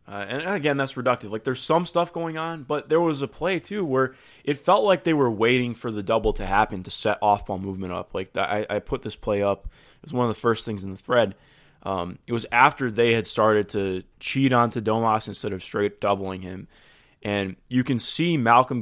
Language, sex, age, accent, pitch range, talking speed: English, male, 20-39, American, 100-130 Hz, 235 wpm